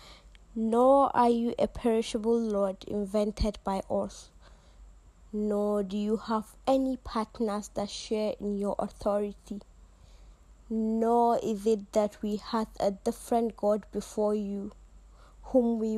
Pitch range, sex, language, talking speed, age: 195-225 Hz, female, English, 125 wpm, 20-39